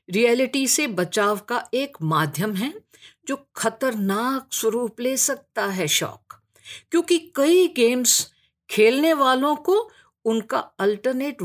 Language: English